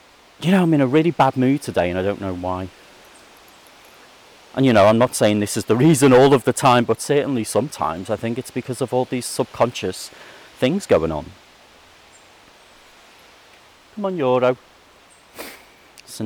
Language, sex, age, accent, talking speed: English, male, 40-59, British, 170 wpm